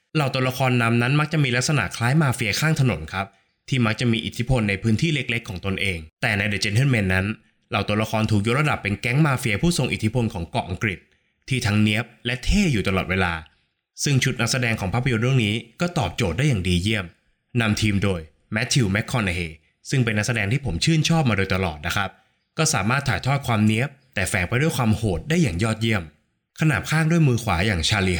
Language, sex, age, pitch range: Thai, male, 20-39, 95-130 Hz